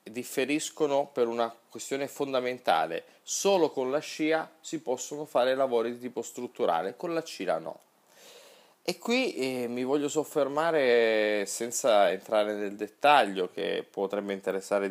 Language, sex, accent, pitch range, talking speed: Italian, male, native, 100-150 Hz, 135 wpm